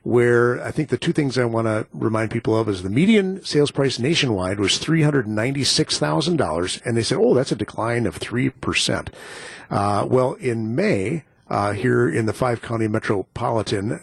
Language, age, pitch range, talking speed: English, 50-69, 110-150 Hz, 165 wpm